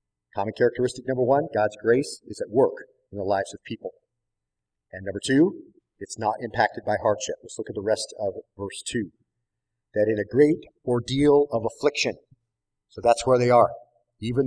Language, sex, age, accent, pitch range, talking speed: English, male, 40-59, American, 115-140 Hz, 180 wpm